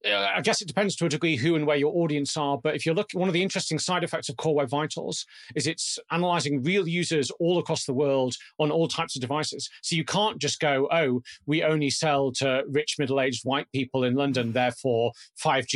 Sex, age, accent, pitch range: male, 40-59, British, 135-160 Hz